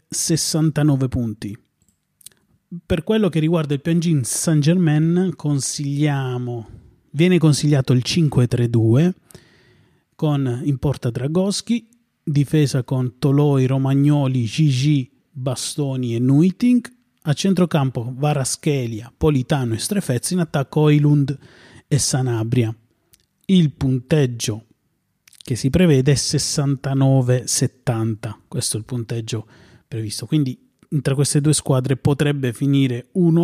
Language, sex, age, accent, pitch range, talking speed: Italian, male, 30-49, native, 125-155 Hz, 105 wpm